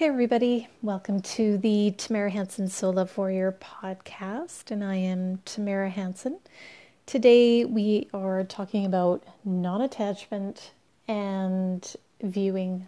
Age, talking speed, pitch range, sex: 30-49, 110 wpm, 195-240 Hz, female